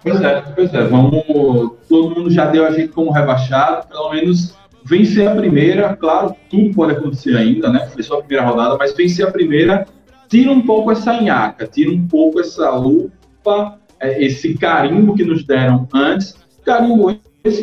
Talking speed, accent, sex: 170 wpm, Brazilian, male